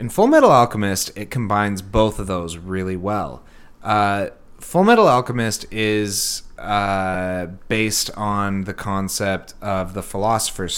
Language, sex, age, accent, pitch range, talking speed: English, male, 30-49, American, 95-110 Hz, 135 wpm